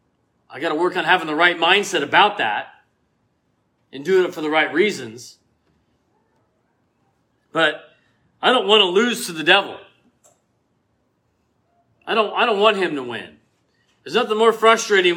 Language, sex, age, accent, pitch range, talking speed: English, male, 40-59, American, 170-210 Hz, 145 wpm